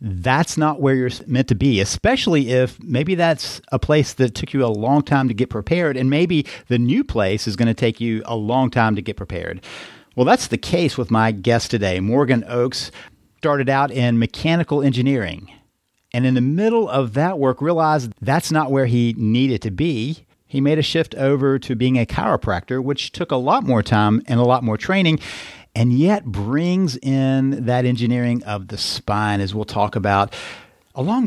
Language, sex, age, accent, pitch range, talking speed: English, male, 50-69, American, 115-150 Hz, 195 wpm